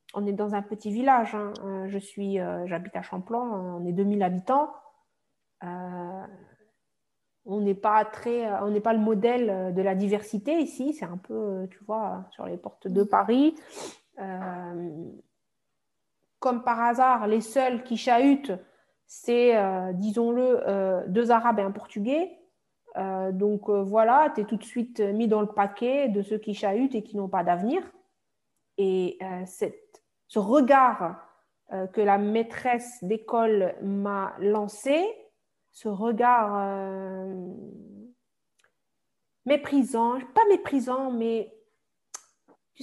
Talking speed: 135 wpm